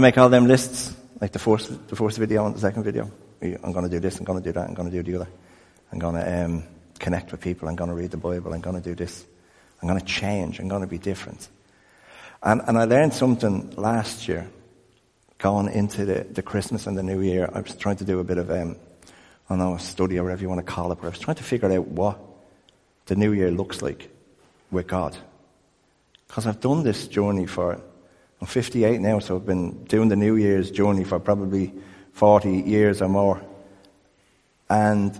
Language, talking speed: English, 225 wpm